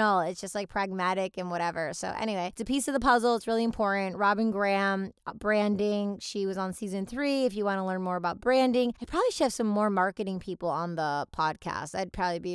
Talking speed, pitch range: 225 wpm, 185-220 Hz